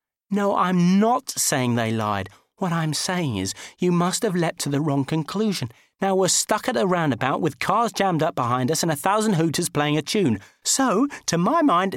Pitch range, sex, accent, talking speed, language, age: 115-180 Hz, male, British, 205 wpm, English, 40-59